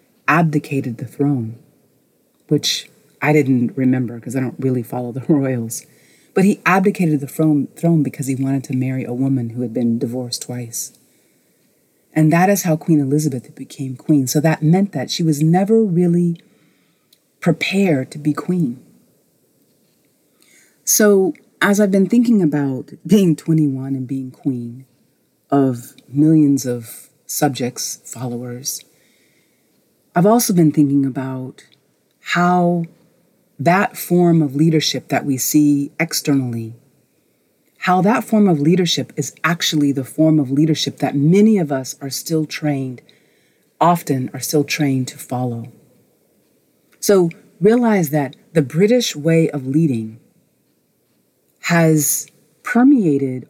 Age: 40-59